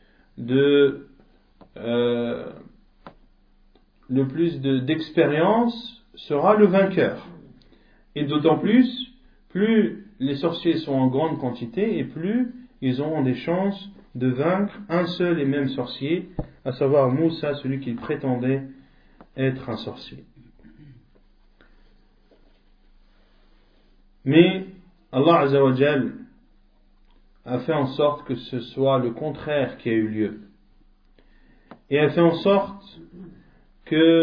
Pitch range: 135-185 Hz